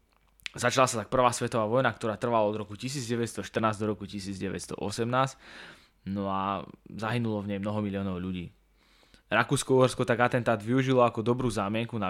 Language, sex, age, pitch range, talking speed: English, male, 20-39, 95-110 Hz, 150 wpm